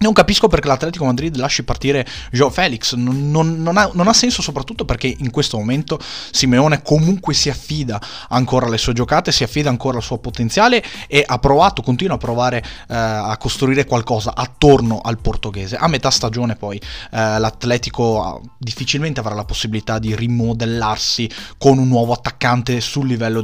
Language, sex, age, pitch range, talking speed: Italian, male, 20-39, 110-140 Hz, 160 wpm